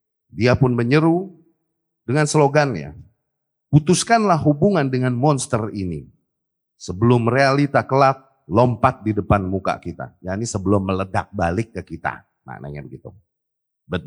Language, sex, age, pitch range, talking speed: Indonesian, male, 30-49, 100-150 Hz, 120 wpm